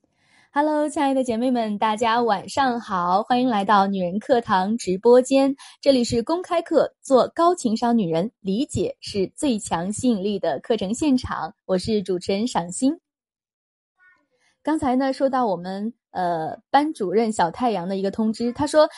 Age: 20-39